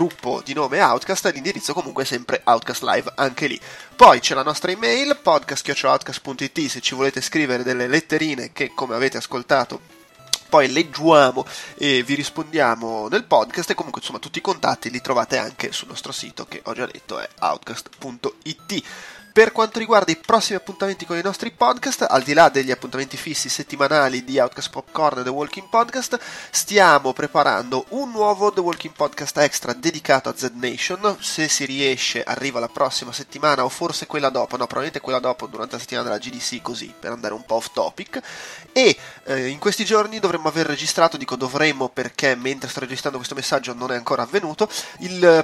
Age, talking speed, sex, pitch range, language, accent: 20-39, 180 wpm, male, 130-185 Hz, Italian, native